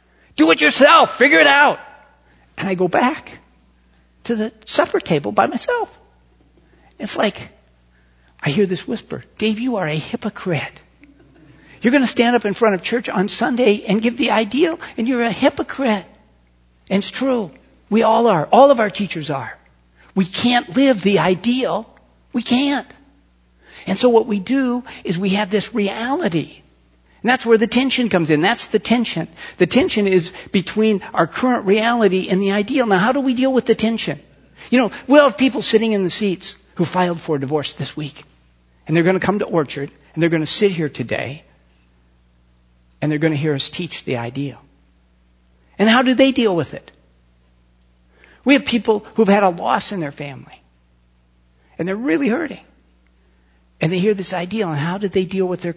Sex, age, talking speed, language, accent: male, 50-69, 185 wpm, English, American